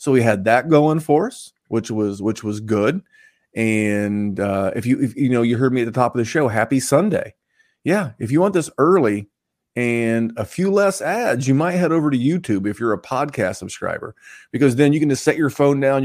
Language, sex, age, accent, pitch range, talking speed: English, male, 30-49, American, 110-150 Hz, 230 wpm